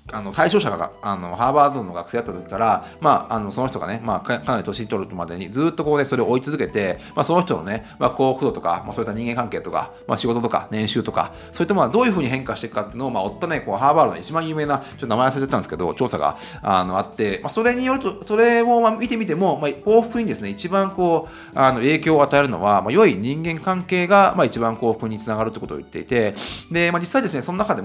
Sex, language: male, Japanese